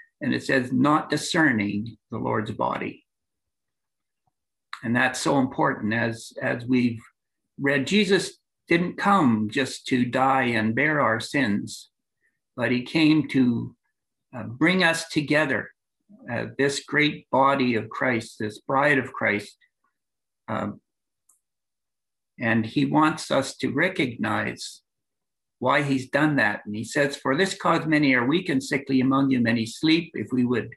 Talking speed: 140 wpm